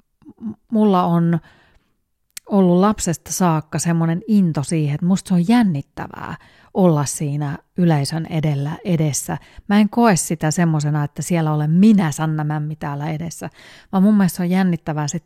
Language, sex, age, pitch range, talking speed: Finnish, female, 30-49, 150-185 Hz, 145 wpm